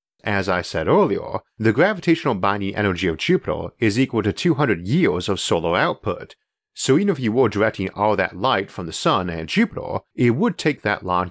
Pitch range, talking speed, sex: 95-125 Hz, 195 wpm, male